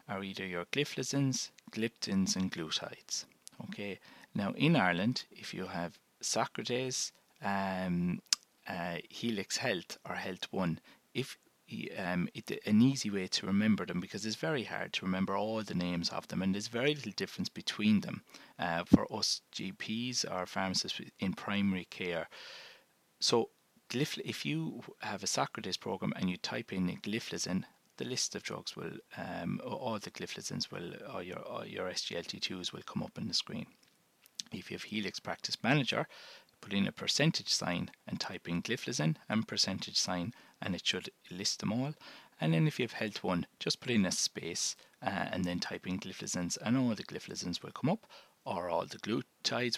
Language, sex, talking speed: English, male, 175 wpm